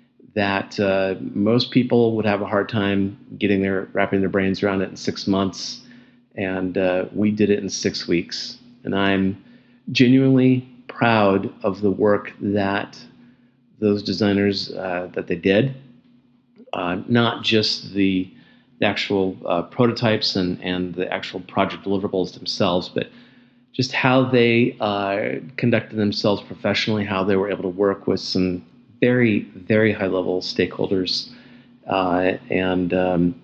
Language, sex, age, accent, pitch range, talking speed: English, male, 40-59, American, 95-120 Hz, 140 wpm